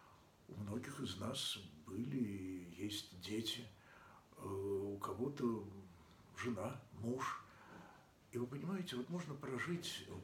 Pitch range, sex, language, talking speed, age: 105-155 Hz, male, Russian, 105 wpm, 60-79